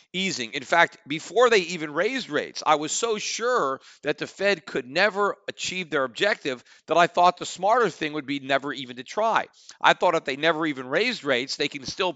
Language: English